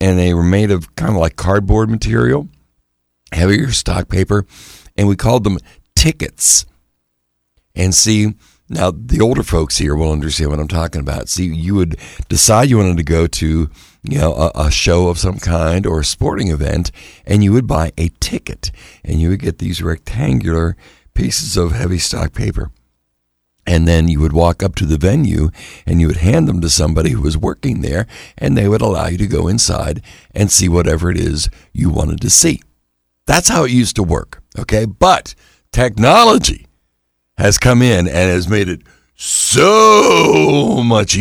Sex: male